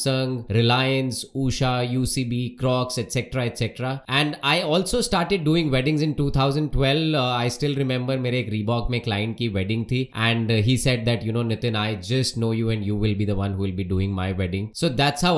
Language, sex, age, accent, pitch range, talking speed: Hindi, male, 20-39, native, 115-145 Hz, 160 wpm